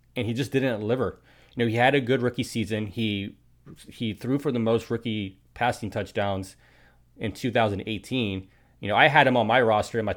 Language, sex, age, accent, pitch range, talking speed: English, male, 30-49, American, 100-120 Hz, 200 wpm